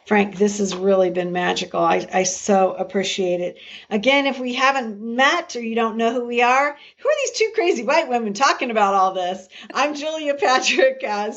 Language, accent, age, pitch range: English, American, 50-69, 185-235 Hz